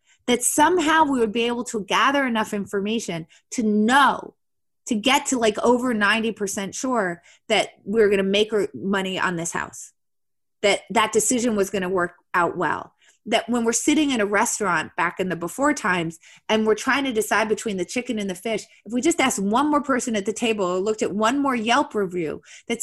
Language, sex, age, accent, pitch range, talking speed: English, female, 30-49, American, 205-270 Hz, 205 wpm